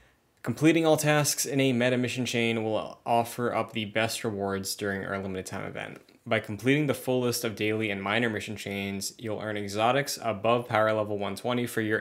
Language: English